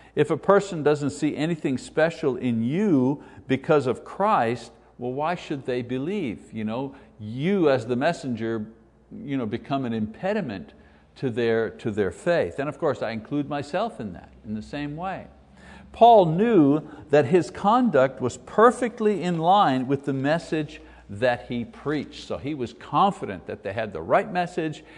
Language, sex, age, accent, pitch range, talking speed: English, male, 60-79, American, 125-175 Hz, 160 wpm